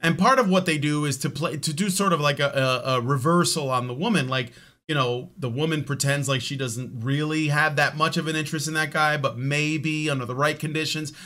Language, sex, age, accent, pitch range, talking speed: English, male, 30-49, American, 135-175 Hz, 240 wpm